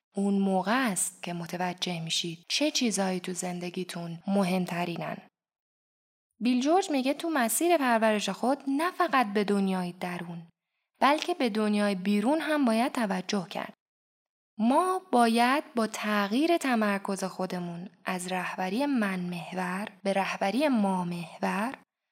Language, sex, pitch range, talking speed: Persian, female, 190-250 Hz, 115 wpm